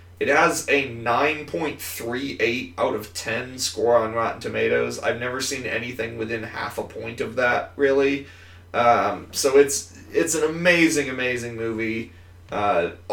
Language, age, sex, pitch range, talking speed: English, 30-49, male, 105-140 Hz, 140 wpm